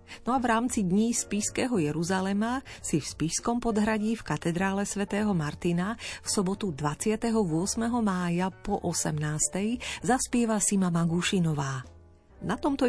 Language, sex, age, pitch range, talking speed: Slovak, female, 40-59, 160-220 Hz, 120 wpm